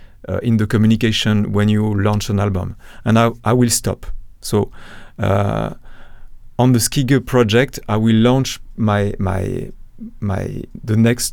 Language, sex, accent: English, male, French